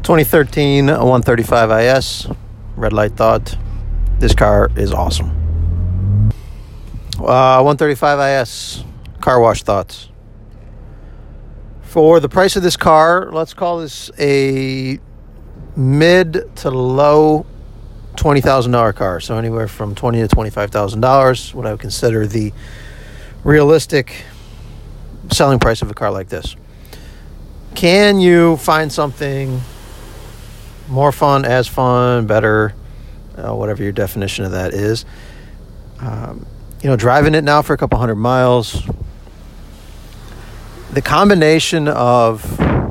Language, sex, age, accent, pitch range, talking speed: English, male, 50-69, American, 105-140 Hz, 110 wpm